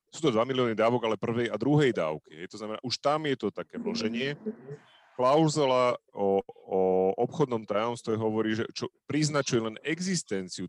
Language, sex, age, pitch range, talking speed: Slovak, male, 30-49, 105-130 Hz, 170 wpm